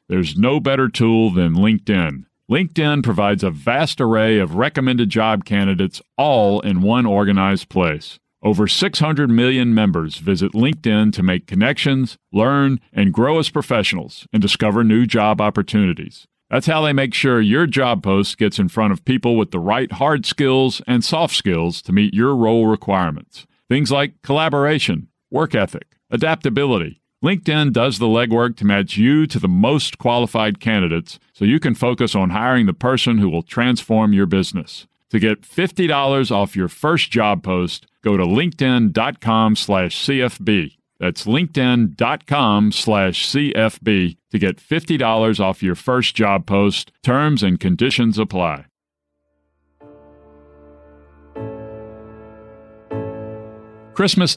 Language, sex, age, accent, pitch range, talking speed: English, male, 50-69, American, 100-130 Hz, 140 wpm